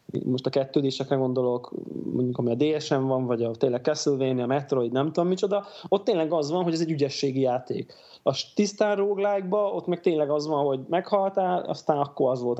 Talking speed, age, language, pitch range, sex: 190 wpm, 20-39, Hungarian, 135-170 Hz, male